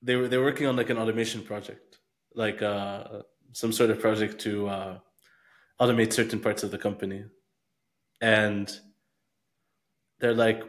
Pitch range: 110-150 Hz